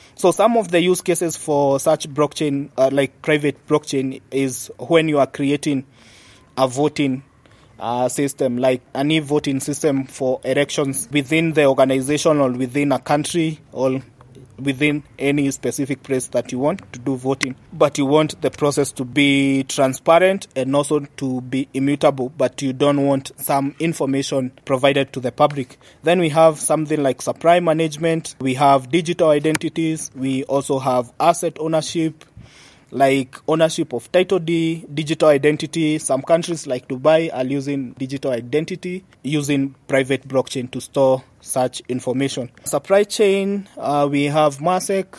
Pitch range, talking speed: 130-155 Hz, 150 wpm